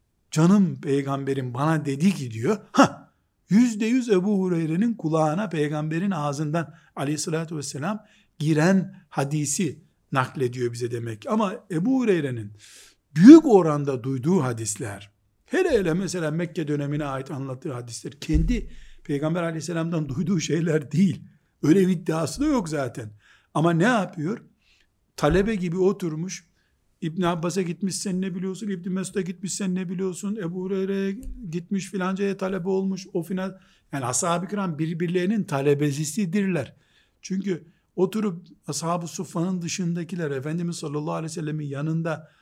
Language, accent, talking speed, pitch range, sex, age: Turkish, native, 120 wpm, 150-195 Hz, male, 60-79